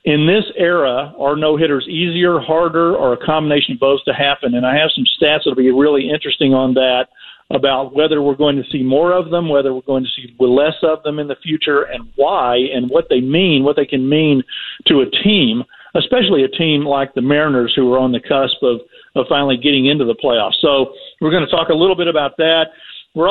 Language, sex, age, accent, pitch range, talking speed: English, male, 50-69, American, 135-165 Hz, 225 wpm